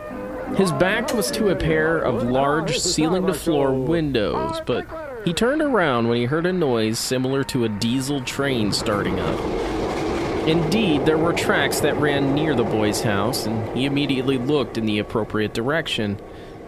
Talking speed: 160 wpm